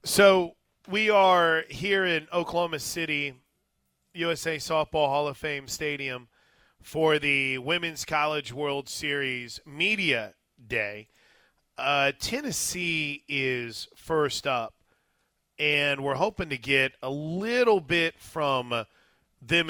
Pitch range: 135-165 Hz